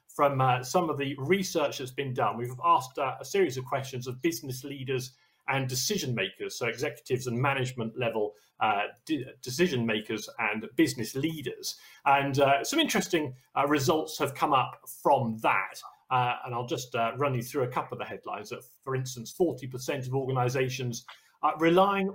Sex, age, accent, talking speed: male, 40-59, British, 180 wpm